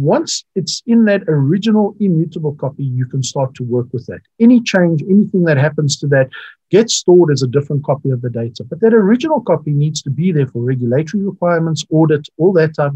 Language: English